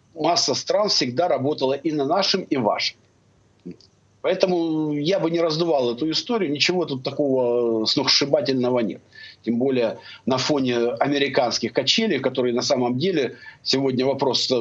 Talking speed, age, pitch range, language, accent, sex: 135 wpm, 50-69, 125-170 Hz, Russian, native, male